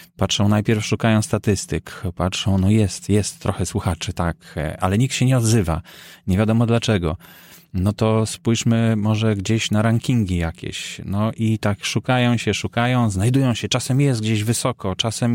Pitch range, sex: 100-120 Hz, male